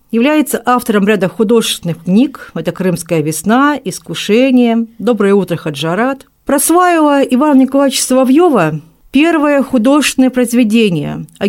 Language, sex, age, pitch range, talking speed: Russian, female, 50-69, 185-260 Hz, 105 wpm